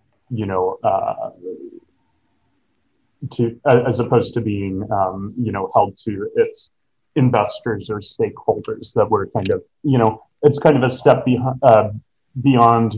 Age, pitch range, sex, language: 30-49, 105-125 Hz, male, English